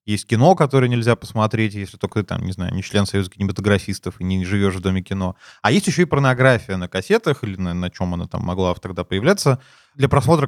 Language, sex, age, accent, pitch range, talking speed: Russian, male, 20-39, native, 105-140 Hz, 225 wpm